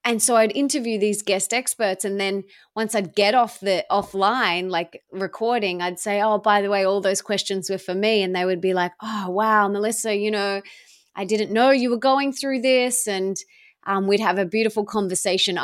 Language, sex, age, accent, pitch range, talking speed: English, female, 20-39, Australian, 190-235 Hz, 205 wpm